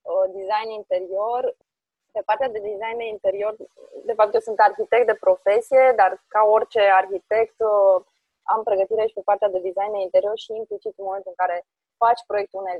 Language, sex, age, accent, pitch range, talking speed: Romanian, female, 20-39, native, 195-245 Hz, 155 wpm